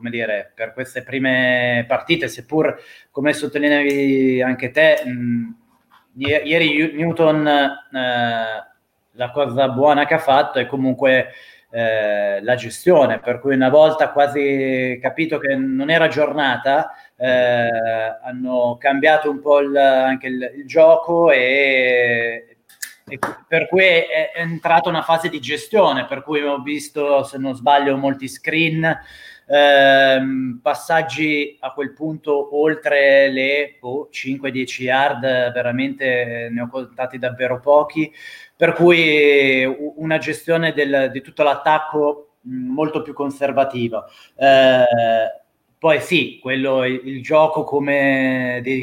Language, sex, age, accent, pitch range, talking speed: Italian, male, 30-49, native, 130-150 Hz, 115 wpm